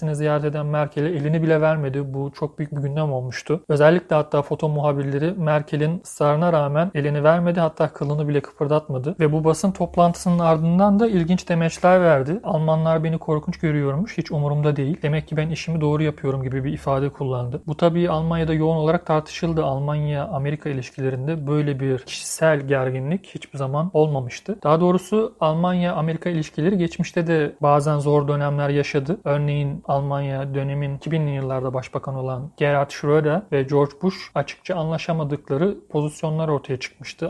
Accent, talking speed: native, 150 wpm